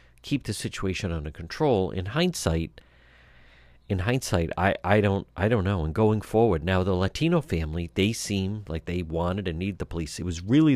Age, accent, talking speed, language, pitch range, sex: 50-69, American, 190 wpm, English, 80-115 Hz, male